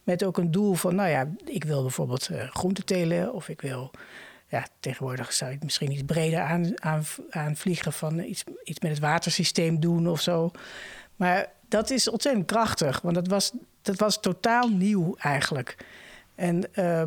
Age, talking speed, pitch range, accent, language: 60-79, 160 wpm, 155-190 Hz, Dutch, Dutch